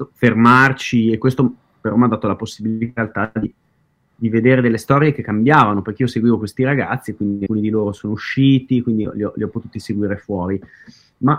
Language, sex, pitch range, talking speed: Italian, male, 115-140 Hz, 185 wpm